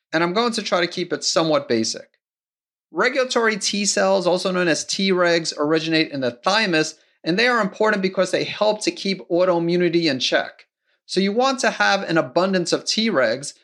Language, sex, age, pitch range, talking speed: English, male, 30-49, 145-190 Hz, 185 wpm